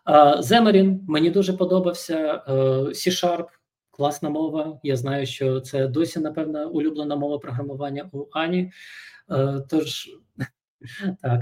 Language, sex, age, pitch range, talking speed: Ukrainian, male, 20-39, 145-190 Hz, 120 wpm